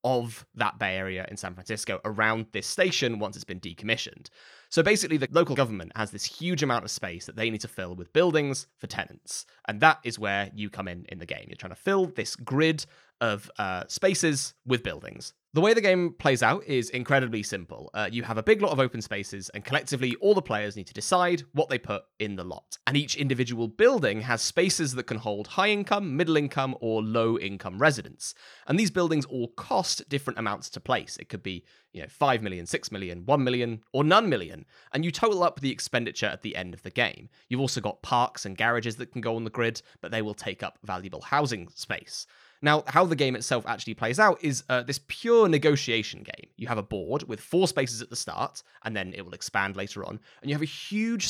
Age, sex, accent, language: 20-39, male, British, English